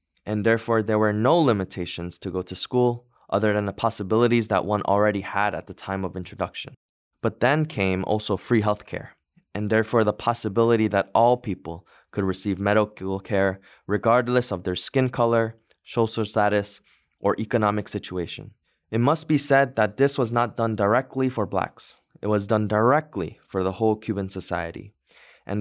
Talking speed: 170 wpm